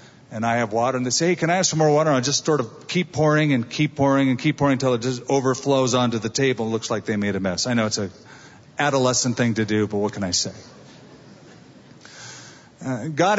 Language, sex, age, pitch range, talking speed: English, male, 50-69, 125-170 Hz, 250 wpm